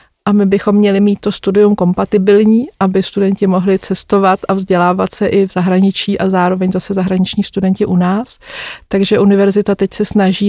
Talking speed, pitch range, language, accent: 170 wpm, 190-210 Hz, Czech, native